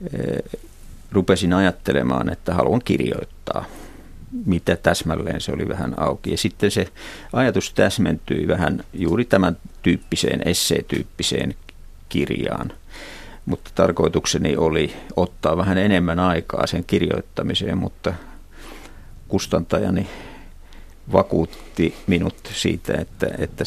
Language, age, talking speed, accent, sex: Finnish, 50-69, 95 wpm, native, male